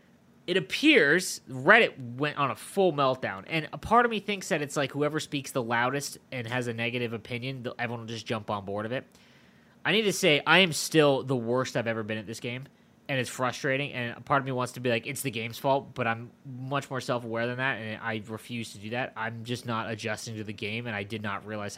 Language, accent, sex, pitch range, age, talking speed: English, American, male, 115-150 Hz, 20-39, 250 wpm